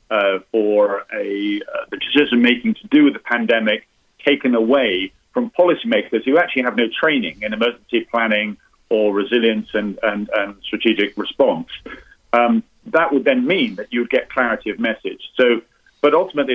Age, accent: 40-59, British